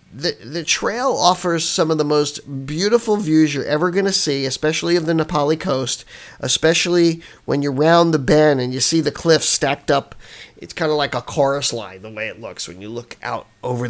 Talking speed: 210 wpm